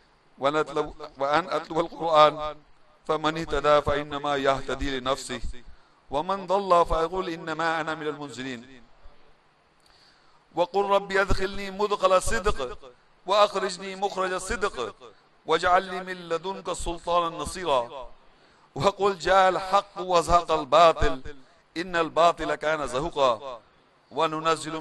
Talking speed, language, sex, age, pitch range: 90 wpm, English, male, 50-69, 150-185 Hz